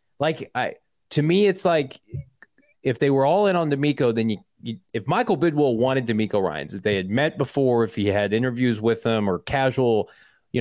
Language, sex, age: English, male, 20-39